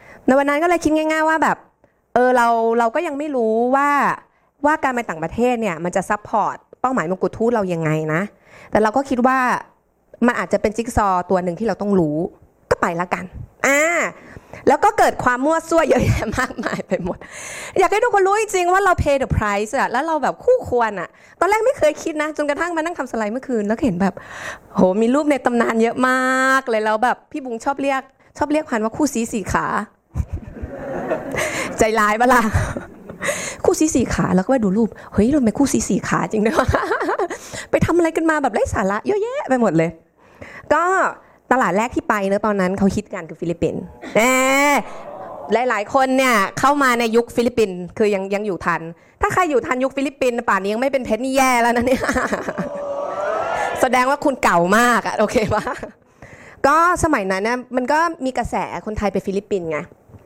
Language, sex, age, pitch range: English, female, 20-39, 210-290 Hz